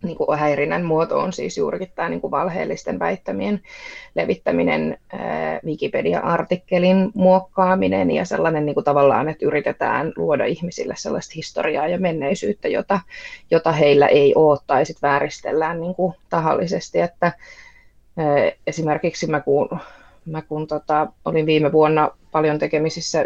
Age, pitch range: 20-39, 150-175 Hz